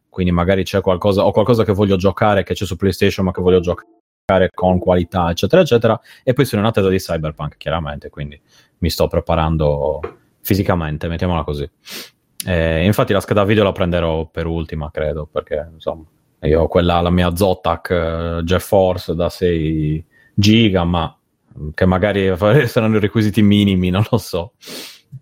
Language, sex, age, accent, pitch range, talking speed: Italian, male, 30-49, native, 85-105 Hz, 160 wpm